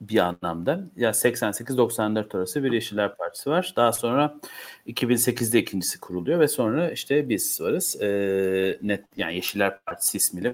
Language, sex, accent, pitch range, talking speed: Turkish, male, native, 100-145 Hz, 140 wpm